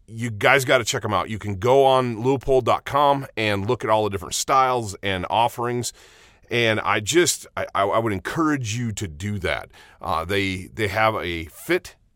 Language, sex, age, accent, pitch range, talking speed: English, male, 30-49, American, 95-125 Hz, 185 wpm